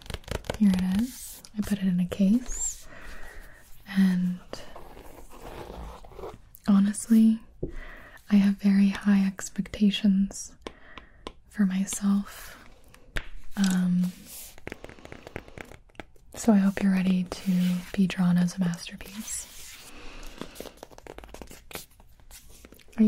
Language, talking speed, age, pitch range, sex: English, 80 wpm, 20-39, 190-210 Hz, female